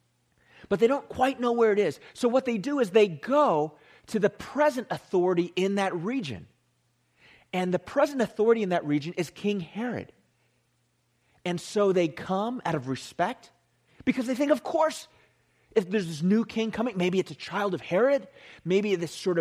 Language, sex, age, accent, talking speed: English, male, 30-49, American, 180 wpm